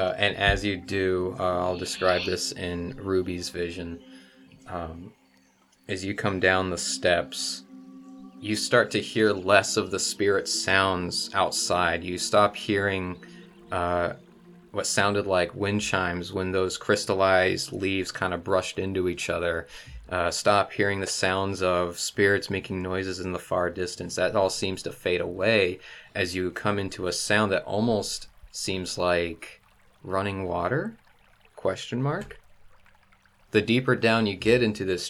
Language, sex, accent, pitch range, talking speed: English, male, American, 90-100 Hz, 150 wpm